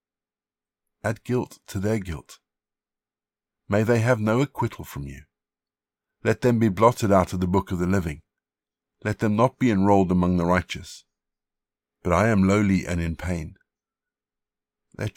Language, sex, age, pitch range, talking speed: English, male, 60-79, 95-115 Hz, 155 wpm